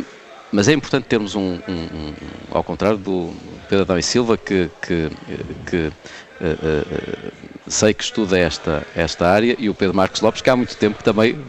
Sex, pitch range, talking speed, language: male, 95-120 Hz, 165 wpm, Portuguese